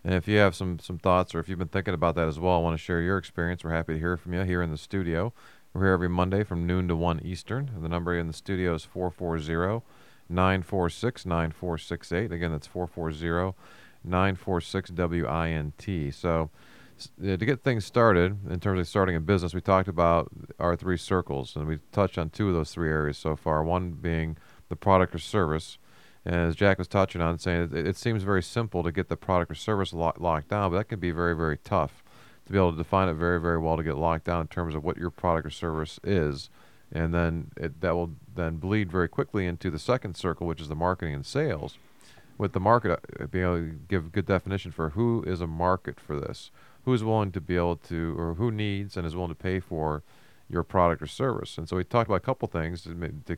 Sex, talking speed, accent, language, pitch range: male, 225 wpm, American, English, 85-95 Hz